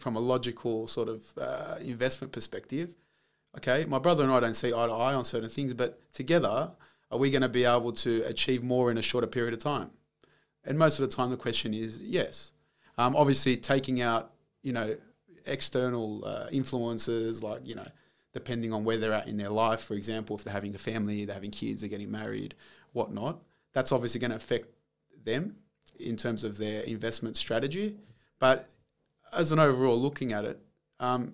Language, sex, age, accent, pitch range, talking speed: English, male, 30-49, Australian, 115-140 Hz, 195 wpm